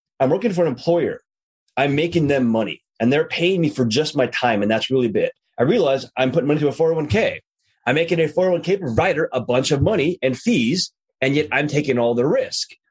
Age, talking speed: 30-49, 220 wpm